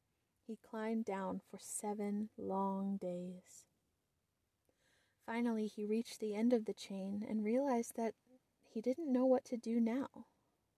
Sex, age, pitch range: female, 20-39, 205-240 Hz